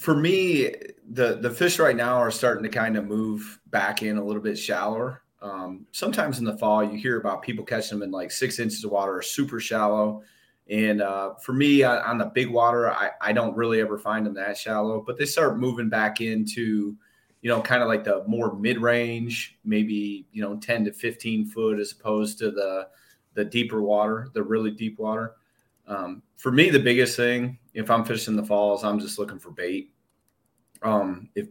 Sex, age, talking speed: male, 30-49, 210 wpm